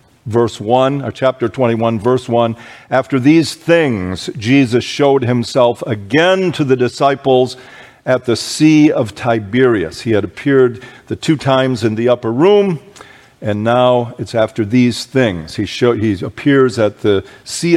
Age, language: 50-69, English